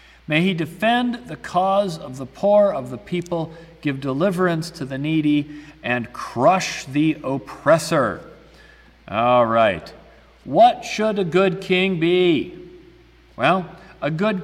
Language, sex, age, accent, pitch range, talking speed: English, male, 50-69, American, 125-185 Hz, 130 wpm